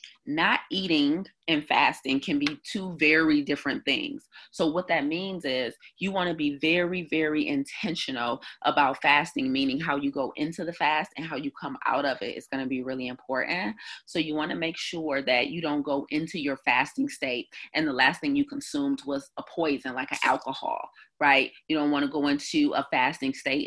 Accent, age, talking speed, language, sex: American, 30-49, 205 wpm, English, female